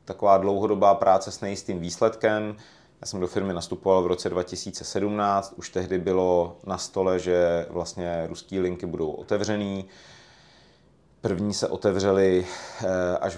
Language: Czech